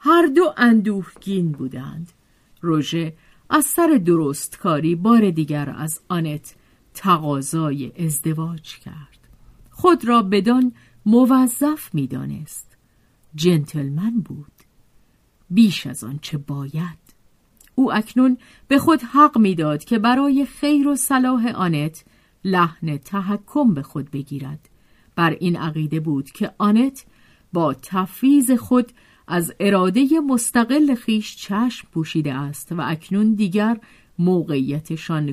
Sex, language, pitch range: female, Persian, 155-235 Hz